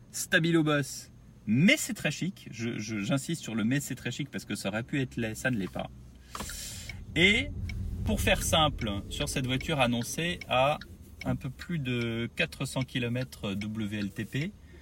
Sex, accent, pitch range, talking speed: male, French, 95-135 Hz, 180 wpm